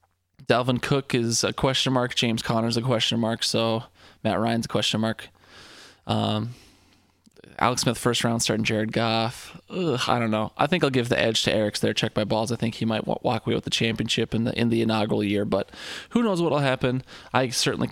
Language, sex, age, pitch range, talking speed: English, male, 20-39, 110-130 Hz, 220 wpm